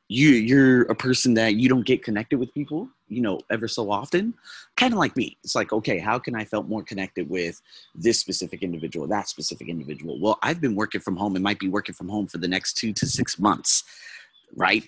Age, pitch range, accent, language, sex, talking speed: 30-49, 95-120 Hz, American, English, male, 225 wpm